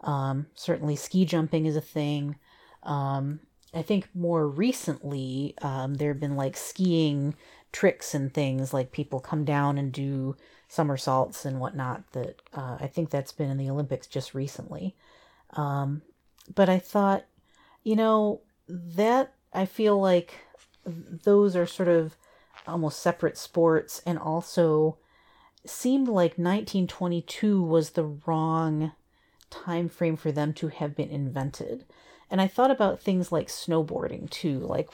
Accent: American